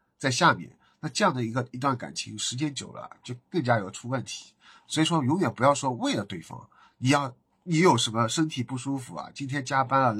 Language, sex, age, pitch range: Chinese, male, 50-69, 115-145 Hz